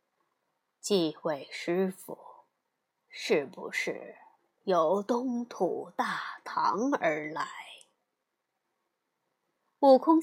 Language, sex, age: Chinese, female, 20-39